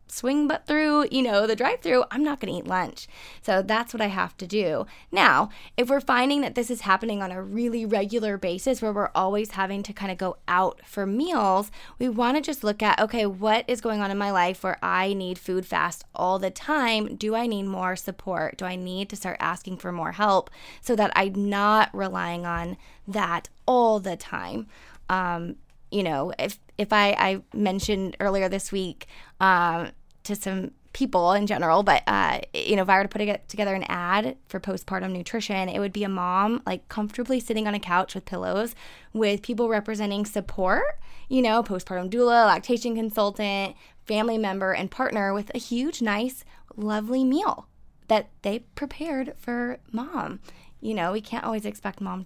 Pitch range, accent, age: 190-235 Hz, American, 10-29